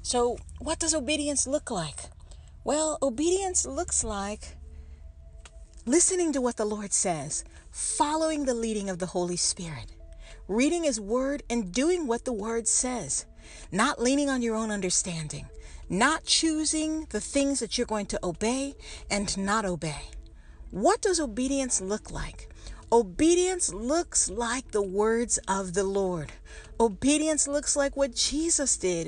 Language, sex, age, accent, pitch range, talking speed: English, female, 50-69, American, 200-280 Hz, 140 wpm